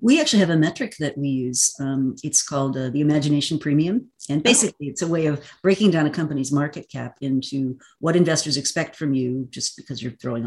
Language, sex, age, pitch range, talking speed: English, female, 50-69, 135-170 Hz, 210 wpm